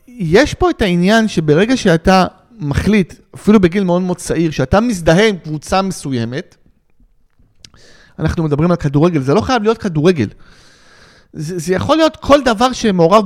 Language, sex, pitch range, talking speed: Hebrew, male, 160-225 Hz, 150 wpm